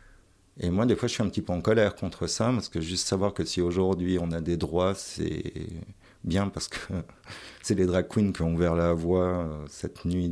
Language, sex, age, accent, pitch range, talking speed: French, male, 50-69, French, 85-105 Hz, 225 wpm